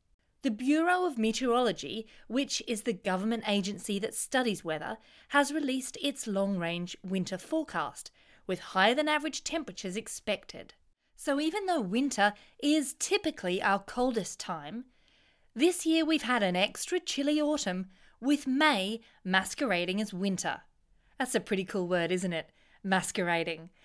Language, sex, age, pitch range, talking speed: English, female, 30-49, 185-280 Hz, 130 wpm